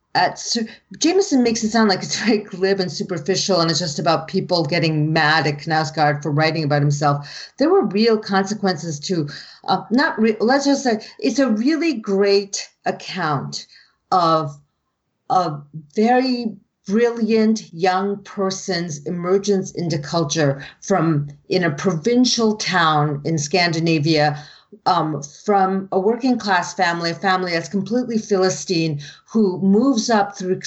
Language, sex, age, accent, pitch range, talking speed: English, female, 40-59, American, 160-215 Hz, 135 wpm